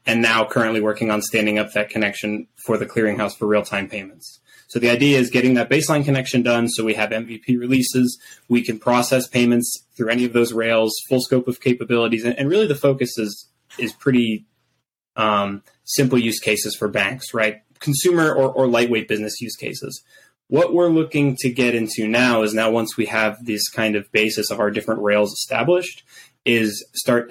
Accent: American